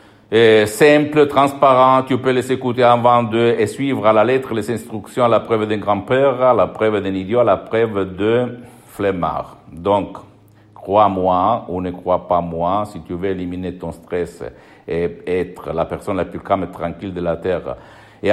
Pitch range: 95-115 Hz